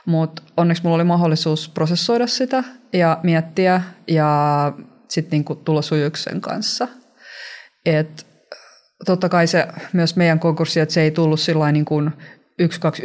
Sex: female